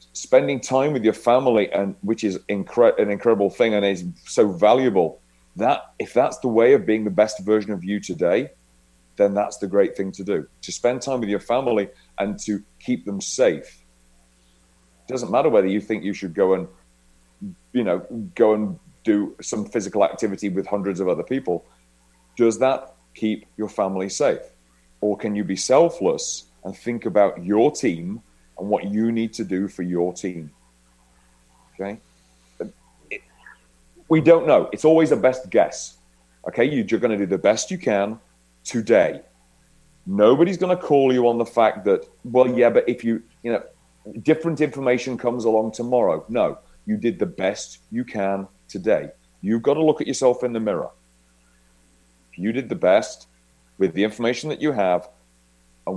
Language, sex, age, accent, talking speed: English, male, 40-59, British, 175 wpm